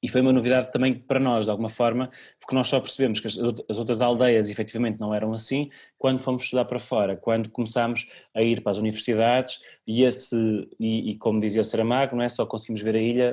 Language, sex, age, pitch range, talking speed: Portuguese, male, 20-39, 110-130 Hz, 220 wpm